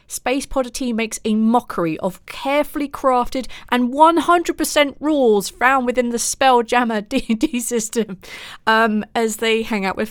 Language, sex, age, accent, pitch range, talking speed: English, female, 30-49, British, 200-260 Hz, 155 wpm